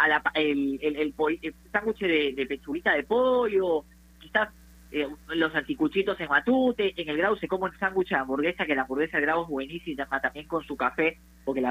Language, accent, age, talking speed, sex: Spanish, Argentinian, 20-39, 200 wpm, female